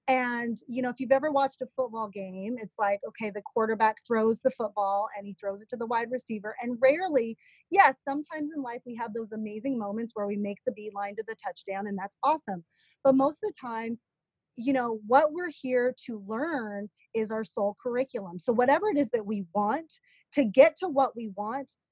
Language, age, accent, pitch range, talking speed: English, 30-49, American, 215-275 Hz, 210 wpm